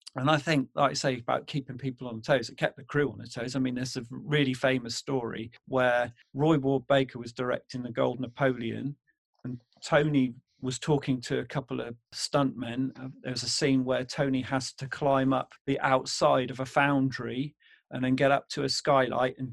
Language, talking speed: English, 200 wpm